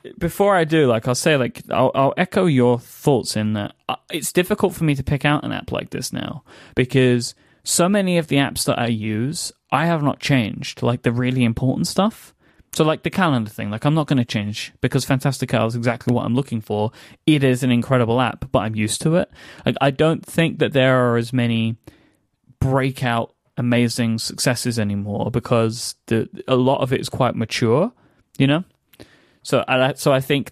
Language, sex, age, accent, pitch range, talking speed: English, male, 10-29, British, 115-140 Hz, 200 wpm